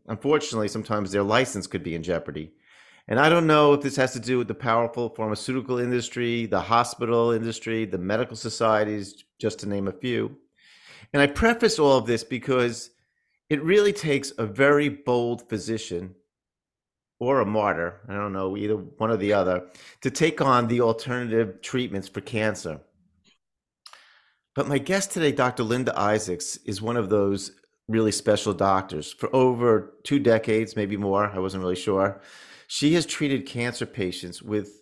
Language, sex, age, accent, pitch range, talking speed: English, male, 50-69, American, 100-125 Hz, 165 wpm